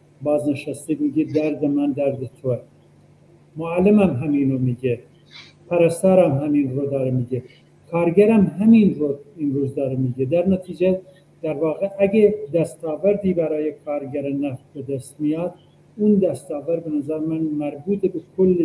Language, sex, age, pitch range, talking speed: Persian, male, 50-69, 140-175 Hz, 125 wpm